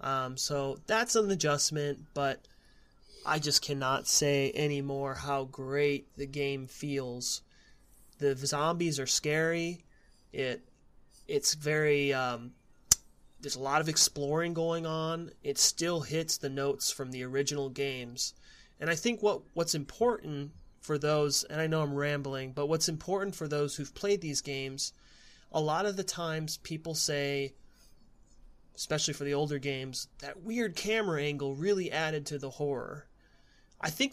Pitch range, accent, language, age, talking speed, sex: 140-170 Hz, American, English, 30-49, 150 wpm, male